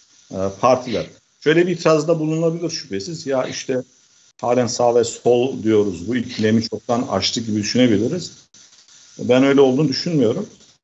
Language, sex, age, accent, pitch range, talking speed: Turkish, male, 50-69, native, 115-155 Hz, 125 wpm